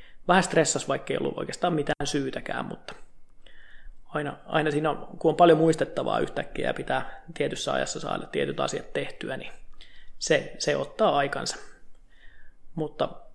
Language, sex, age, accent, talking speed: Finnish, male, 20-39, native, 145 wpm